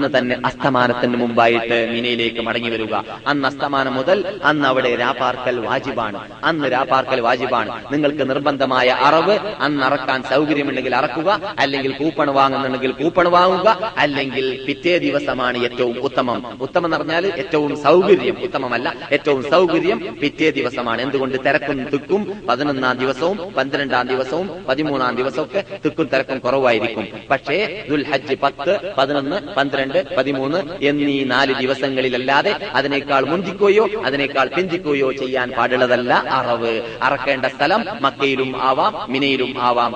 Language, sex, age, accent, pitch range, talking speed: Malayalam, male, 30-49, native, 125-145 Hz, 100 wpm